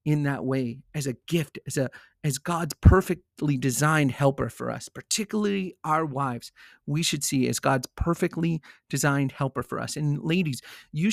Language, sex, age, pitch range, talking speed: English, male, 40-59, 135-165 Hz, 165 wpm